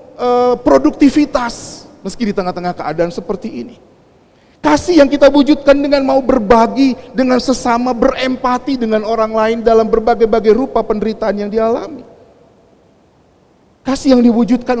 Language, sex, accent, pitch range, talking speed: Indonesian, male, native, 155-225 Hz, 120 wpm